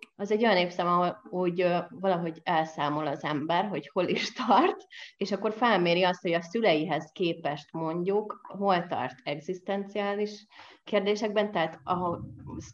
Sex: female